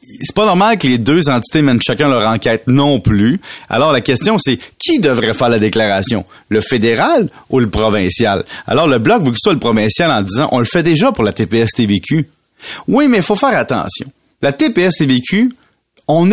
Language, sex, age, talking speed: French, male, 30-49, 200 wpm